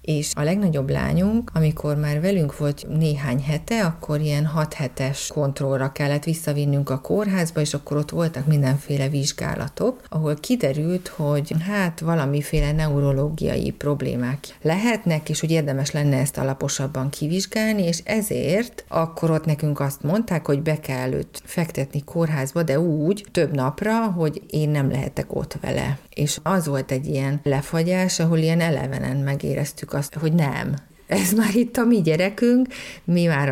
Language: Hungarian